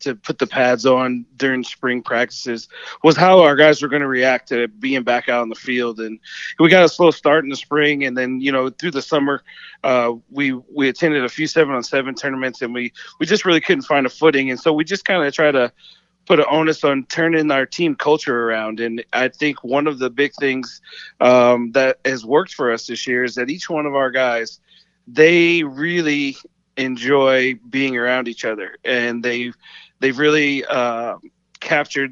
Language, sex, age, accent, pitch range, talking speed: English, male, 30-49, American, 125-150 Hz, 205 wpm